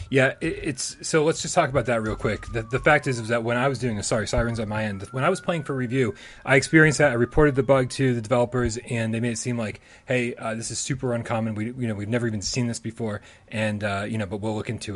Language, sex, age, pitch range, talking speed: English, male, 30-49, 105-130 Hz, 290 wpm